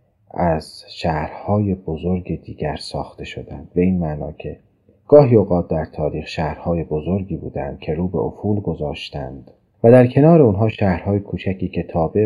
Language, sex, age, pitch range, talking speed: Persian, male, 40-59, 80-105 Hz, 140 wpm